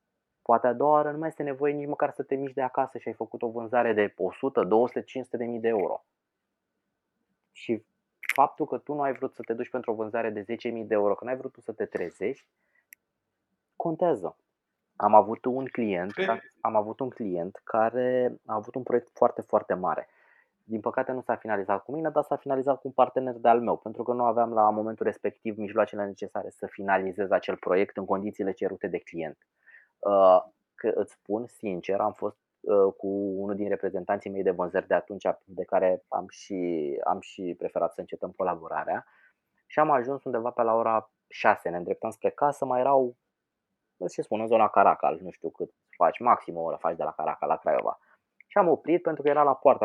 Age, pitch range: 20-39, 105-130 Hz